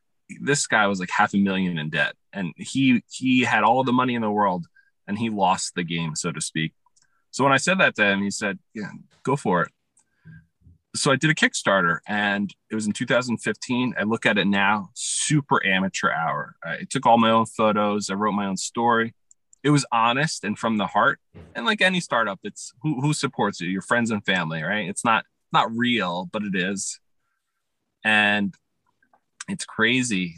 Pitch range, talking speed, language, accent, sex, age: 100-130 Hz, 200 wpm, English, American, male, 20-39